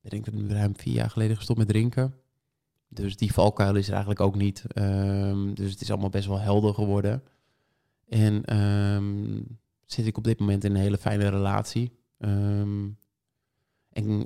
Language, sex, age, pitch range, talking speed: Dutch, male, 20-39, 100-115 Hz, 175 wpm